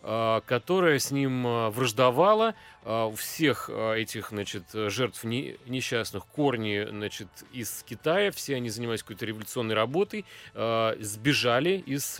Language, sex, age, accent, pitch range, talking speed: Russian, male, 30-49, native, 110-140 Hz, 100 wpm